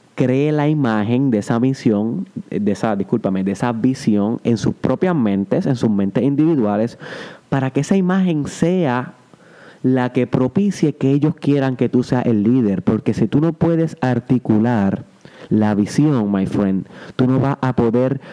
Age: 30-49